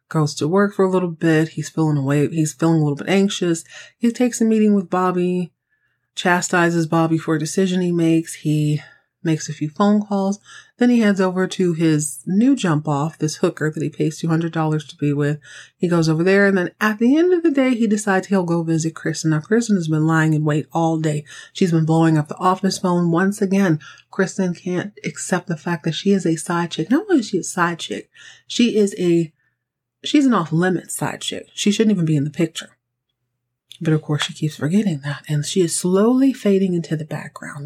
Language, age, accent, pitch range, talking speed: English, 30-49, American, 150-195 Hz, 215 wpm